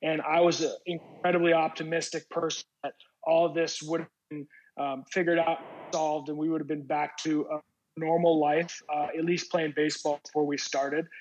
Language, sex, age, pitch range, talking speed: English, male, 20-39, 155-175 Hz, 195 wpm